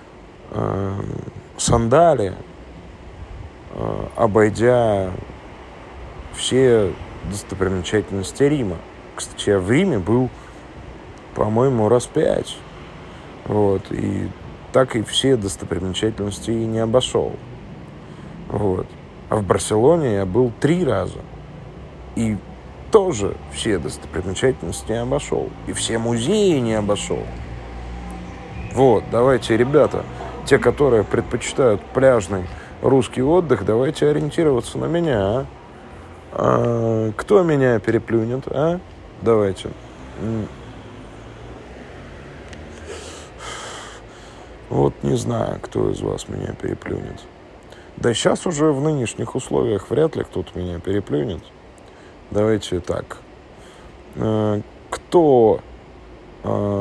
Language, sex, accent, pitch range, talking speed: Russian, male, native, 85-120 Hz, 85 wpm